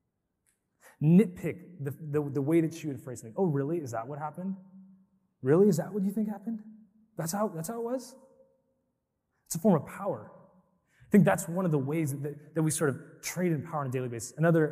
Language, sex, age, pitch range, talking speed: English, male, 20-39, 125-165 Hz, 220 wpm